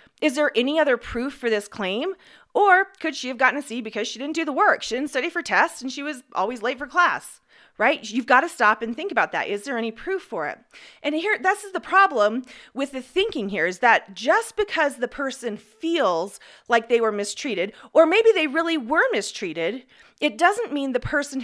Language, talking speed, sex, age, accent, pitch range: English, 225 wpm, female, 30-49, American, 220-330 Hz